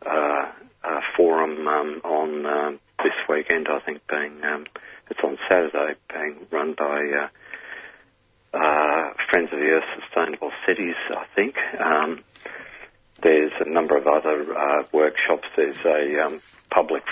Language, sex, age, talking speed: English, male, 50-69, 140 wpm